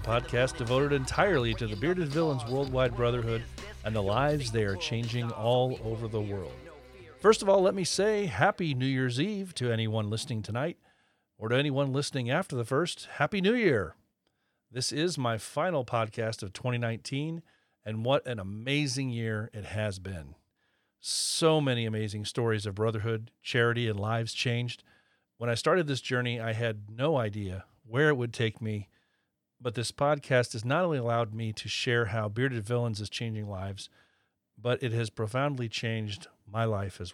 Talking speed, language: 170 wpm, English